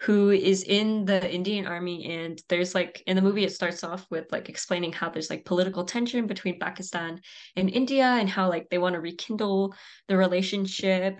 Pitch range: 175-195 Hz